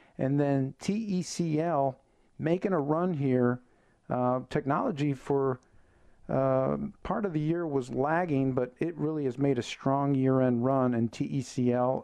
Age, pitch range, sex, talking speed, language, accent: 50-69, 120-145 Hz, male, 140 wpm, English, American